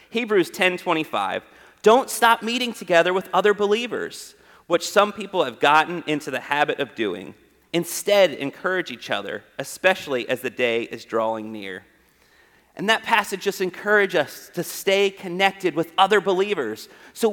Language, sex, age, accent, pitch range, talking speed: English, male, 30-49, American, 155-215 Hz, 150 wpm